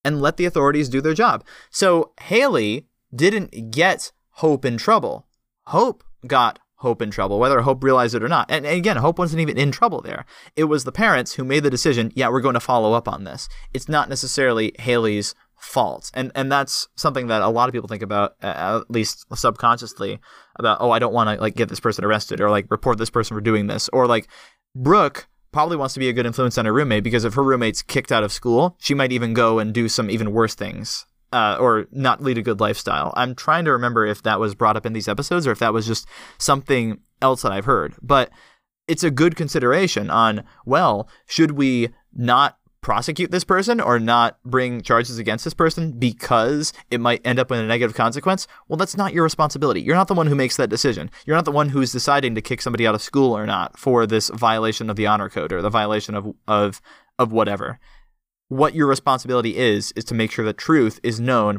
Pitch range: 110-140 Hz